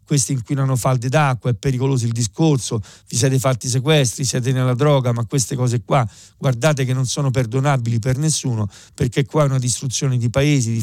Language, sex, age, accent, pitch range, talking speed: Italian, male, 40-59, native, 120-145 Hz, 190 wpm